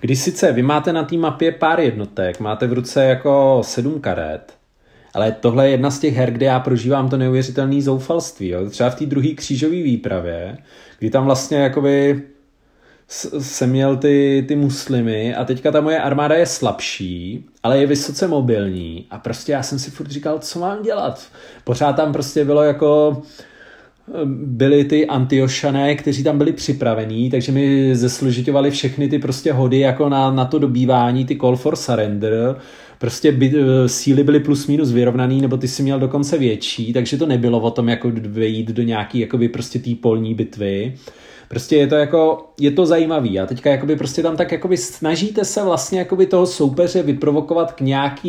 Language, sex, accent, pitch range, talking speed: Czech, male, native, 125-145 Hz, 170 wpm